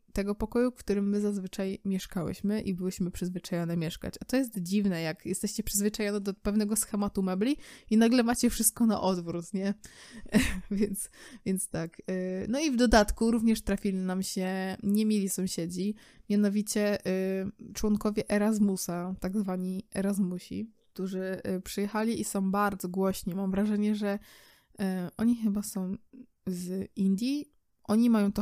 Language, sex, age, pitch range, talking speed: Polish, female, 20-39, 185-215 Hz, 140 wpm